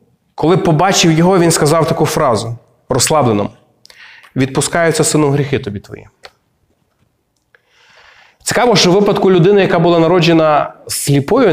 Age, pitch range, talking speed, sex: 20-39, 125-165 Hz, 115 wpm, male